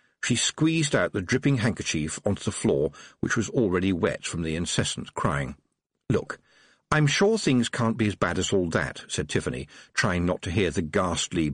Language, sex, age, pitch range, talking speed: English, male, 50-69, 95-165 Hz, 185 wpm